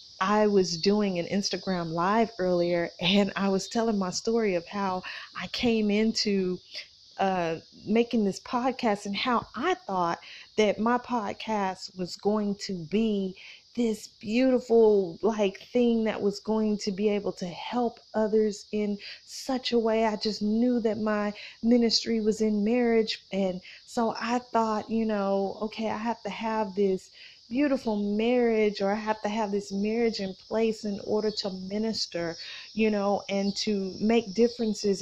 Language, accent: English, American